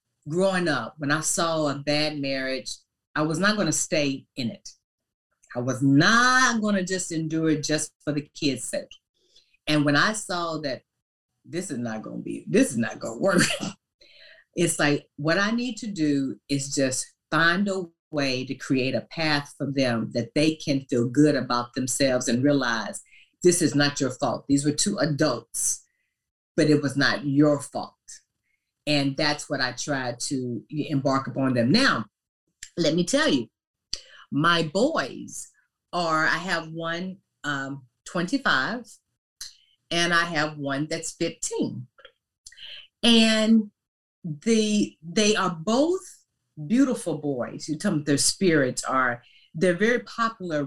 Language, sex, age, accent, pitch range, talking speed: English, female, 40-59, American, 140-185 Hz, 155 wpm